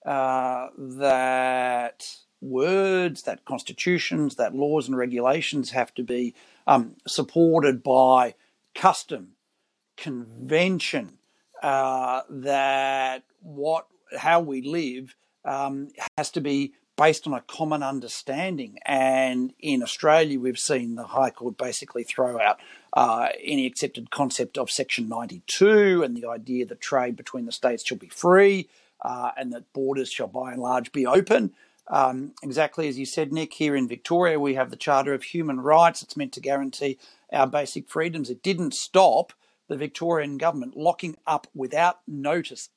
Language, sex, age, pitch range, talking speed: English, male, 50-69, 130-155 Hz, 145 wpm